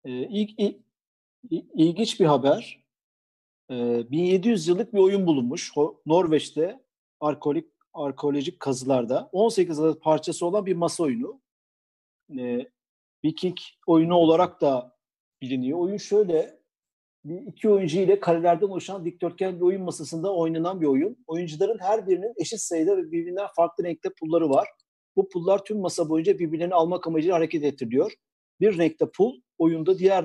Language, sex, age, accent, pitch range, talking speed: Turkish, male, 50-69, native, 155-210 Hz, 135 wpm